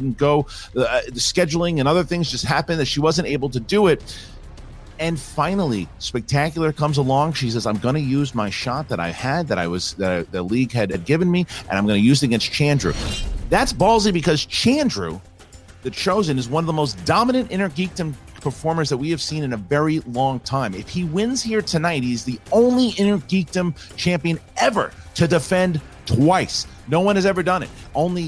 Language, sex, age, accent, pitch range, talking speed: English, male, 40-59, American, 120-170 Hz, 210 wpm